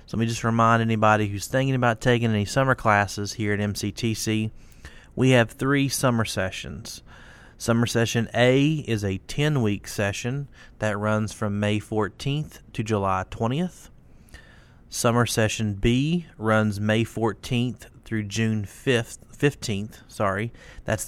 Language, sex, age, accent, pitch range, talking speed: English, male, 30-49, American, 105-120 Hz, 135 wpm